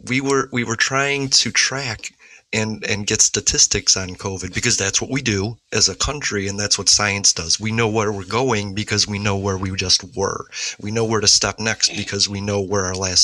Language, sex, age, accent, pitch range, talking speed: English, male, 30-49, American, 95-115 Hz, 225 wpm